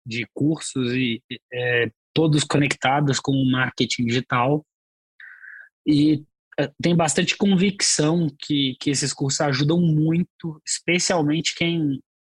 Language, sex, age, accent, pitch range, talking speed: Portuguese, male, 20-39, Brazilian, 130-155 Hz, 110 wpm